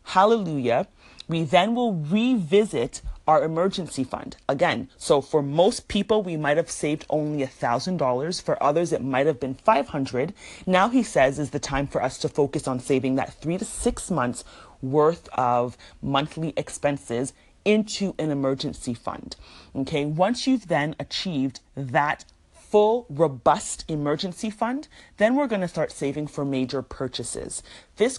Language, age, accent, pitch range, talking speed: English, 30-49, American, 130-180 Hz, 150 wpm